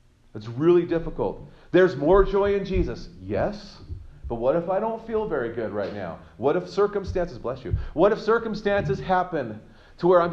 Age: 40-59